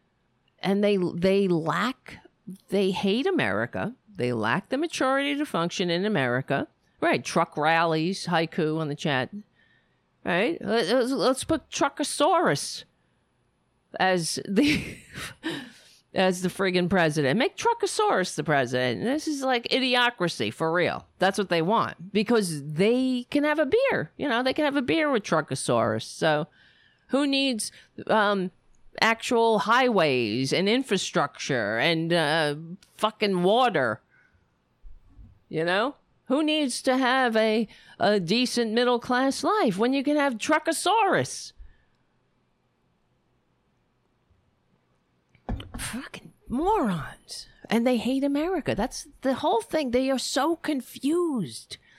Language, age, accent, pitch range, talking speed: English, 50-69, American, 165-265 Hz, 120 wpm